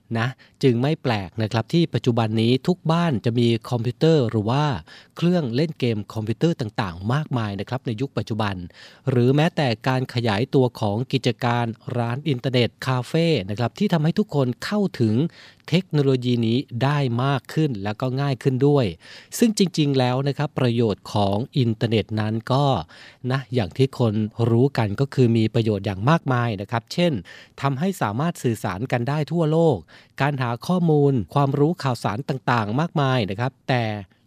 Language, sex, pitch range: Thai, male, 115-145 Hz